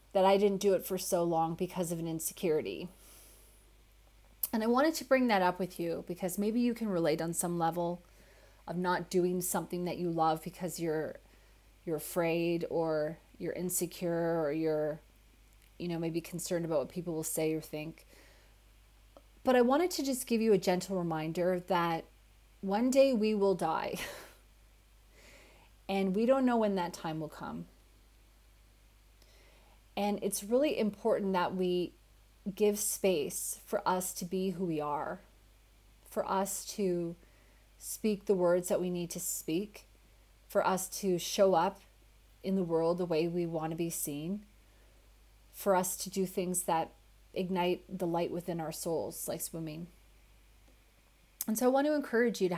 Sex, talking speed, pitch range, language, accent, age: female, 165 wpm, 145-190 Hz, English, American, 30-49